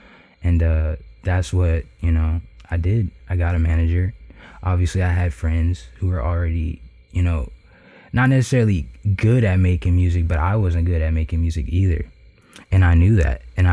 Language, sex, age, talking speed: English, male, 20-39, 175 wpm